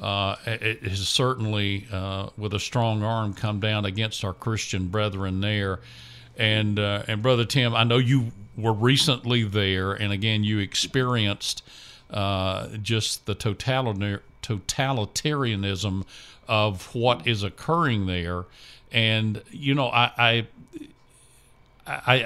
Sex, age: male, 50-69